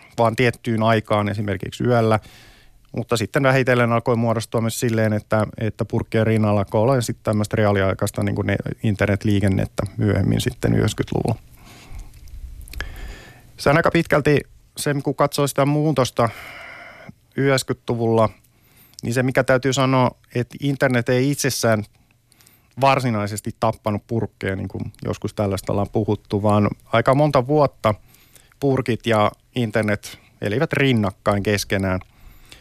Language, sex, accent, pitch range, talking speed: Finnish, male, native, 110-135 Hz, 120 wpm